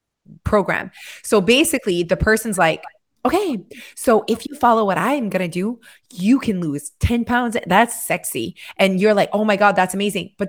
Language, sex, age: English, female, 20-39